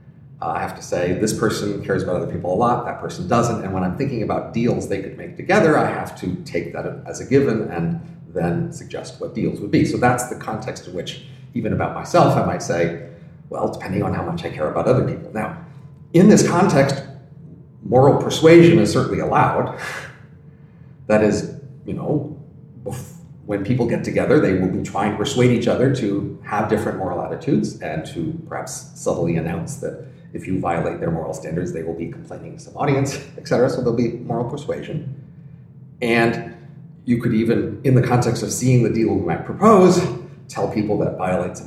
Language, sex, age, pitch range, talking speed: English, male, 40-59, 120-155 Hz, 195 wpm